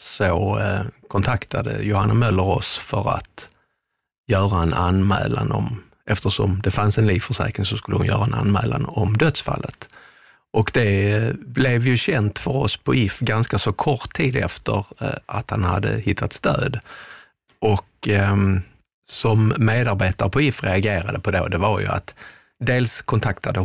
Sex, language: male, Swedish